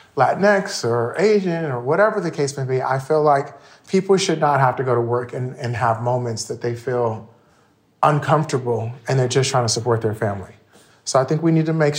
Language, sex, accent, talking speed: English, male, American, 215 wpm